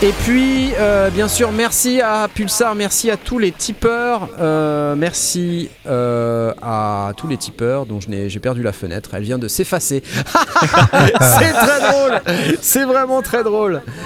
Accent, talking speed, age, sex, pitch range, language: French, 155 wpm, 30-49, male, 135-215 Hz, French